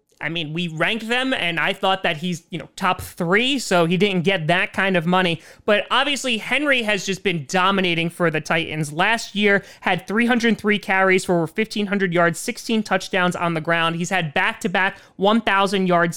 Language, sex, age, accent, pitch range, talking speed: English, male, 30-49, American, 170-215 Hz, 180 wpm